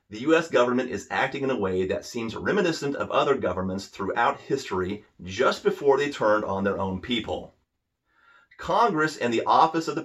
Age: 30-49